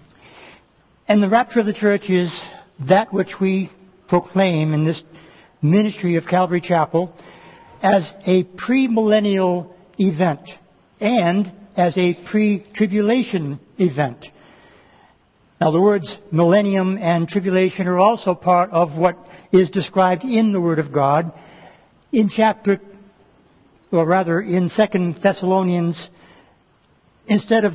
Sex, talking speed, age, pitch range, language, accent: male, 115 wpm, 60-79, 170-200 Hz, English, American